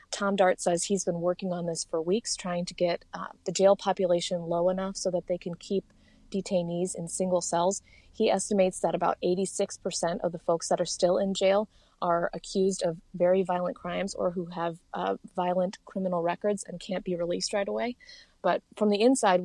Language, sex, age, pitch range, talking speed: English, female, 20-39, 175-195 Hz, 195 wpm